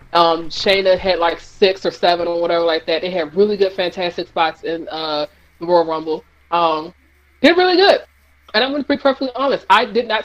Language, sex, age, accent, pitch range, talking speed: English, female, 20-39, American, 170-235 Hz, 210 wpm